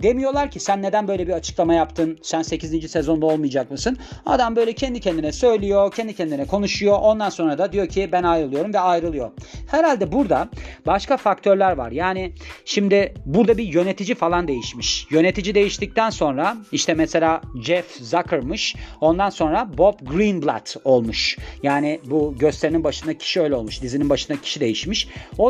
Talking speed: 155 wpm